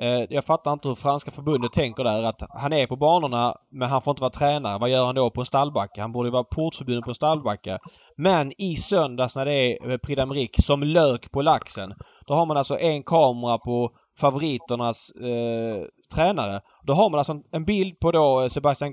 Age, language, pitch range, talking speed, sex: 20-39, Swedish, 125-160 Hz, 200 wpm, male